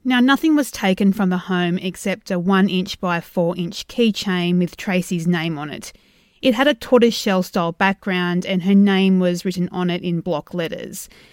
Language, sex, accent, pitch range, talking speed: English, female, Australian, 175-215 Hz, 195 wpm